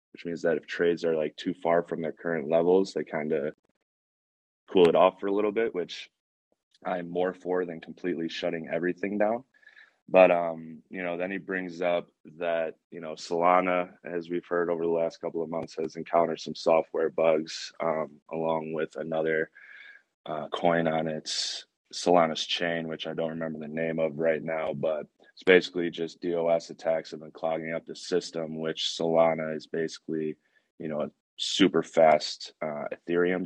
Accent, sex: American, male